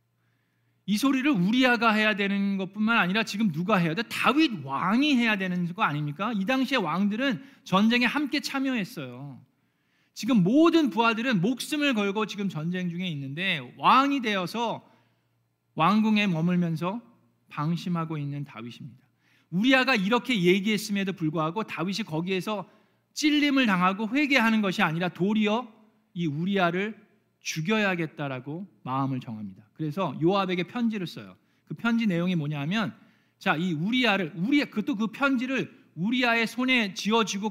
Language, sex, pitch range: Korean, male, 160-225 Hz